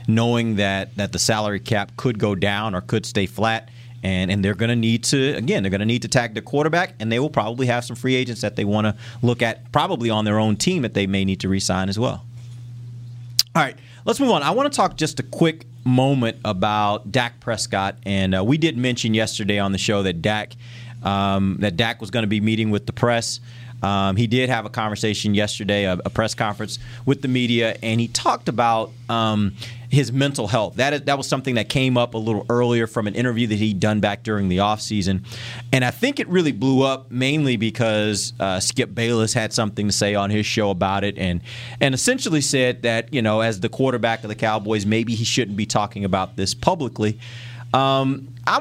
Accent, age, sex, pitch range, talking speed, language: American, 30-49, male, 105-125 Hz, 220 wpm, English